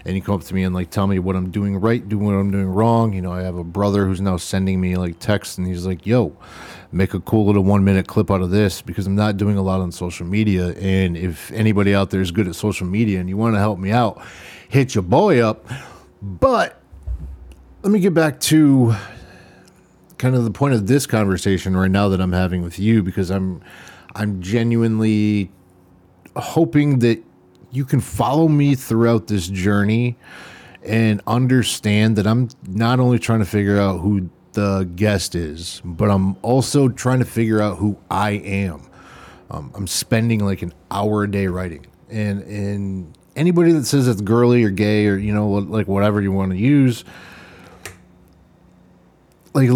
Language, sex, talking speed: English, male, 195 wpm